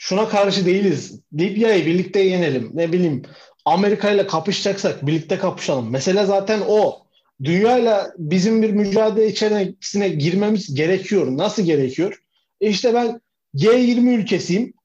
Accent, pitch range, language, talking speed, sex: native, 180-230 Hz, Turkish, 115 wpm, male